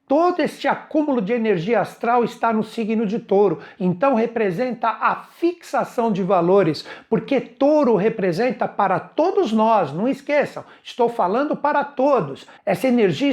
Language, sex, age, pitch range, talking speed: Portuguese, male, 60-79, 205-275 Hz, 140 wpm